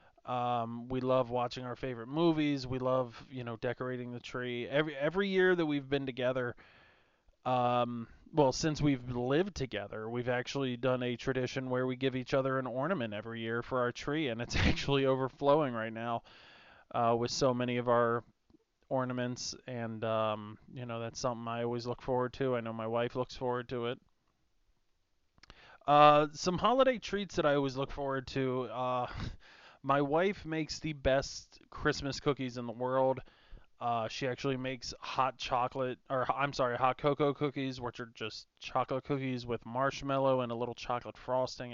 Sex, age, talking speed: male, 20-39, 175 wpm